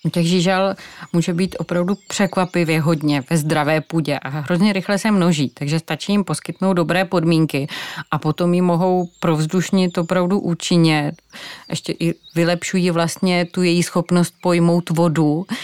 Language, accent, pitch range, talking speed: Czech, native, 165-185 Hz, 140 wpm